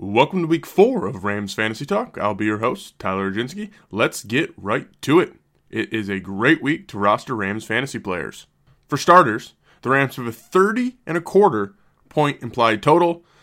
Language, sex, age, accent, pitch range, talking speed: English, male, 20-39, American, 105-145 Hz, 190 wpm